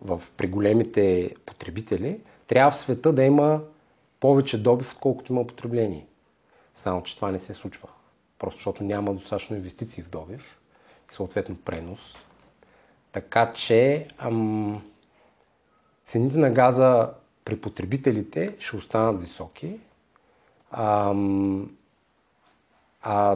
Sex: male